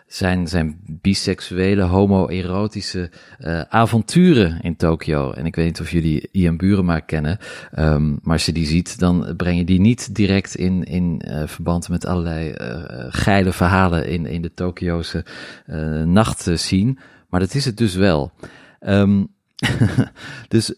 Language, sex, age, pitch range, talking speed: Dutch, male, 40-59, 85-100 Hz, 140 wpm